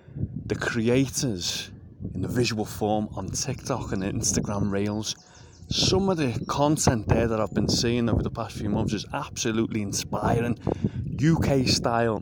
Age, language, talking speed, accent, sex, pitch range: 30-49, English, 140 wpm, British, male, 110-140 Hz